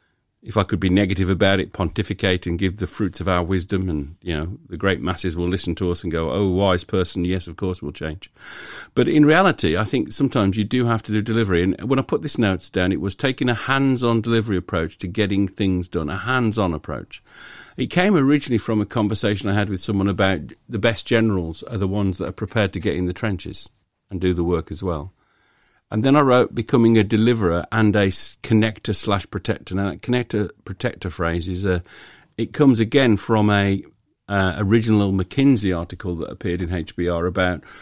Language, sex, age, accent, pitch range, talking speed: English, male, 50-69, British, 90-110 Hz, 215 wpm